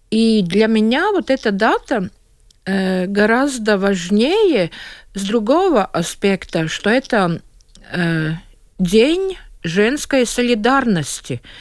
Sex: female